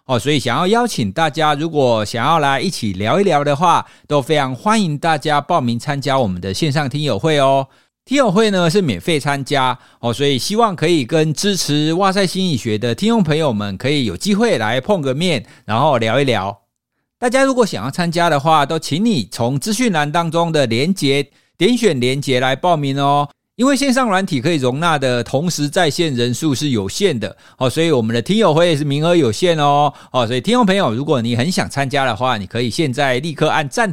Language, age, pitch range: Chinese, 50-69, 125-185 Hz